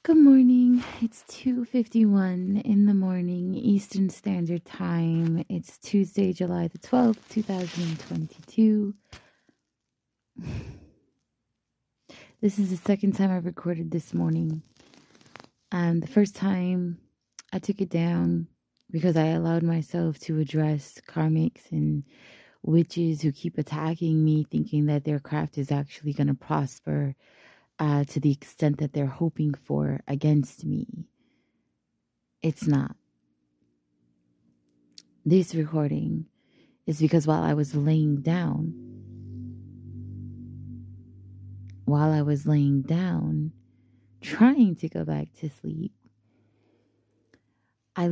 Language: English